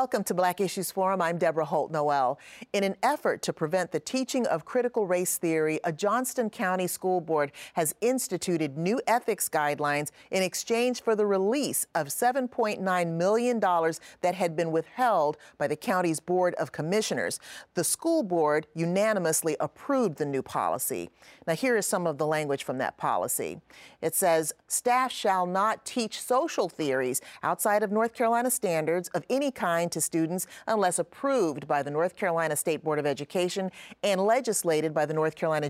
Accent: American